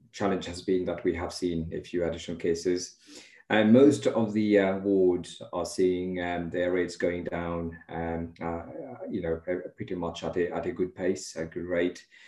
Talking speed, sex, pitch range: 190 wpm, male, 85-90 Hz